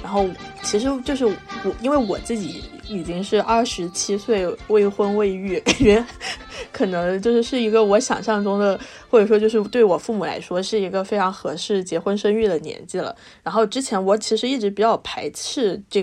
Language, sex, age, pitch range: Chinese, female, 20-39, 190-230 Hz